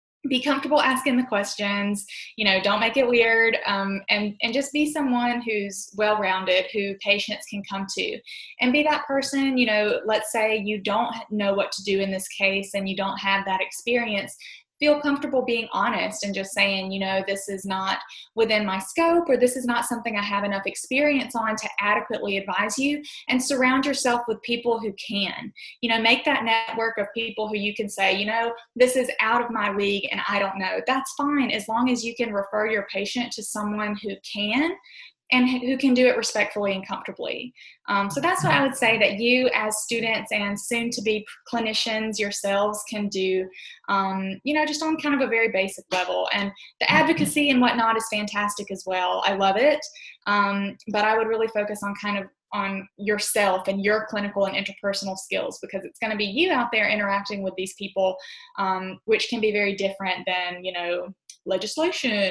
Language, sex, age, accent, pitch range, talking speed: English, female, 20-39, American, 200-245 Hz, 200 wpm